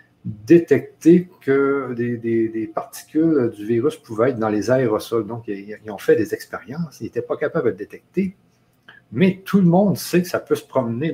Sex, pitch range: male, 110-170 Hz